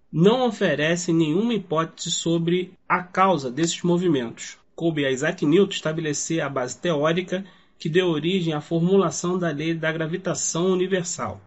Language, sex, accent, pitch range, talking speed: Portuguese, male, Brazilian, 145-175 Hz, 140 wpm